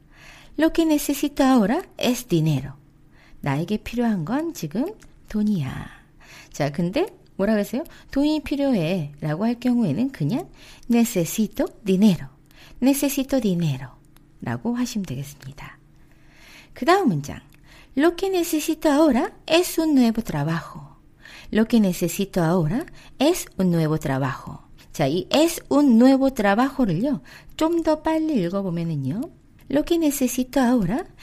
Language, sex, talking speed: English, female, 115 wpm